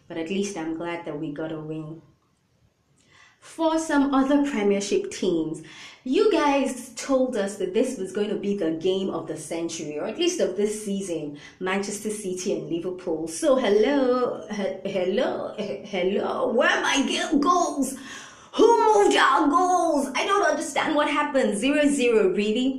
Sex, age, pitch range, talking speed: female, 20-39, 175-280 Hz, 165 wpm